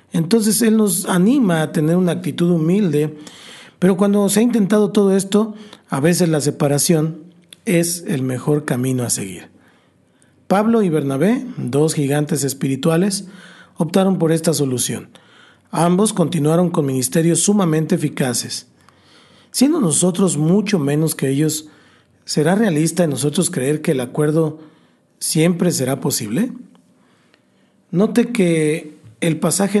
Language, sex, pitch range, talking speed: Spanish, male, 150-190 Hz, 125 wpm